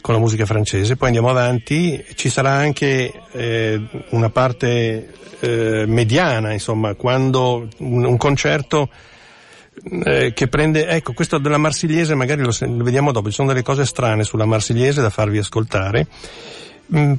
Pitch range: 110-145 Hz